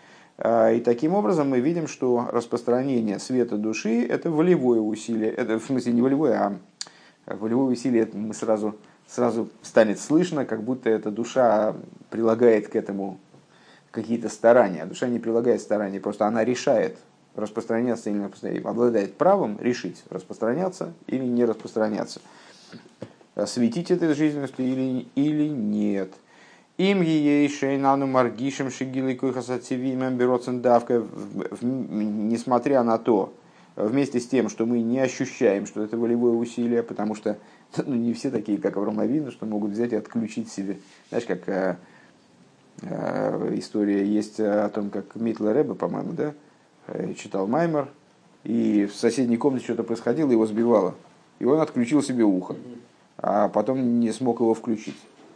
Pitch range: 110-130 Hz